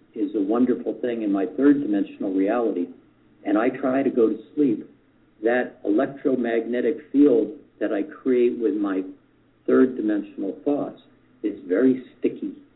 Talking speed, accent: 140 wpm, American